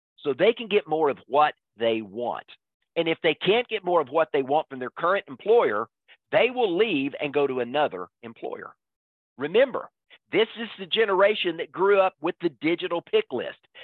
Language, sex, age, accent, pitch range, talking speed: English, male, 50-69, American, 135-205 Hz, 190 wpm